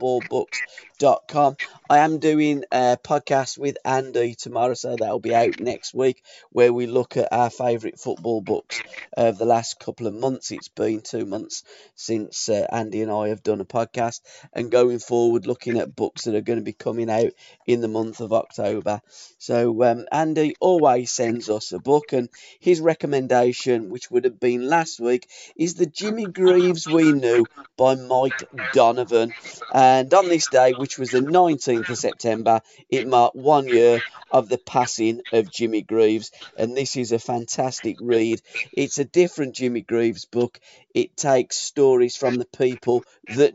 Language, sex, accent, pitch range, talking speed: English, male, British, 115-135 Hz, 170 wpm